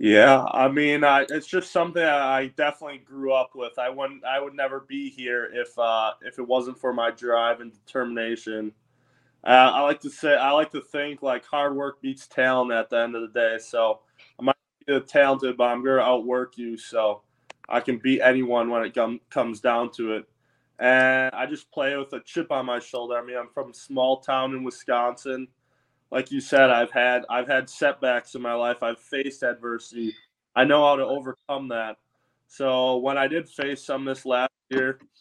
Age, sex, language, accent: 20-39, male, English, American